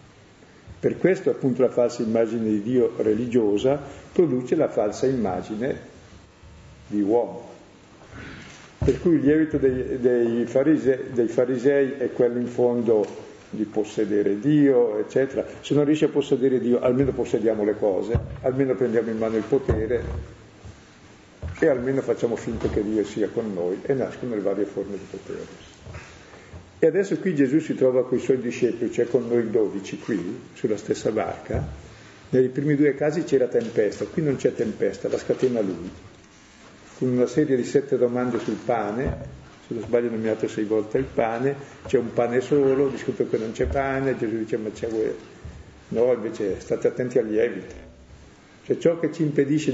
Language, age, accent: Italian, 50-69, native